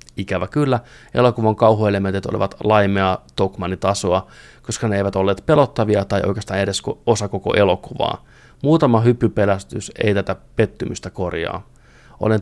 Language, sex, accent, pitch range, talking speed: Finnish, male, native, 95-115 Hz, 120 wpm